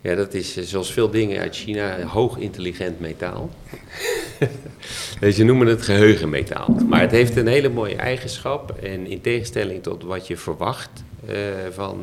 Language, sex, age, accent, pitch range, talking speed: Dutch, male, 40-59, Dutch, 90-110 Hz, 165 wpm